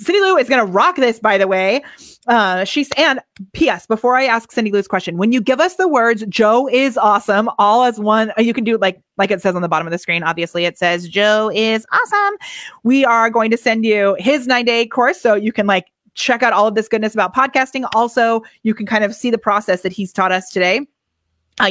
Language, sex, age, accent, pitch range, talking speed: English, female, 30-49, American, 195-245 Hz, 240 wpm